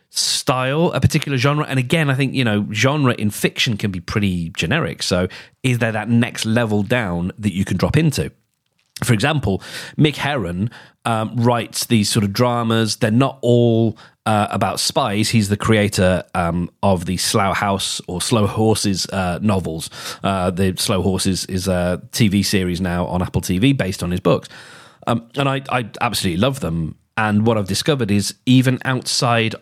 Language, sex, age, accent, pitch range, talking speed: English, male, 40-59, British, 100-130 Hz, 180 wpm